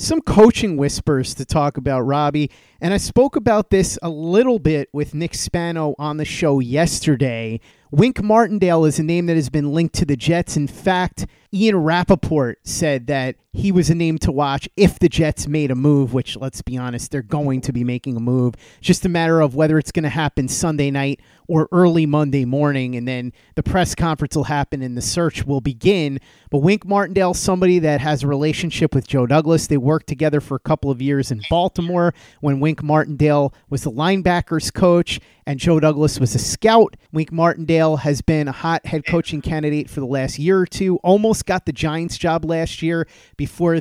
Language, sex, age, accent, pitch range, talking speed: English, male, 30-49, American, 140-175 Hz, 205 wpm